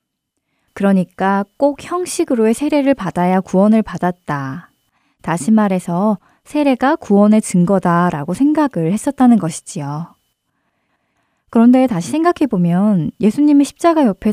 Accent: native